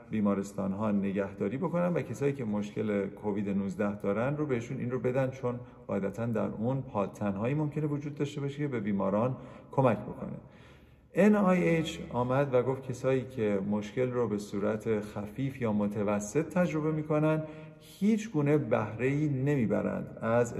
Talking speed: 150 wpm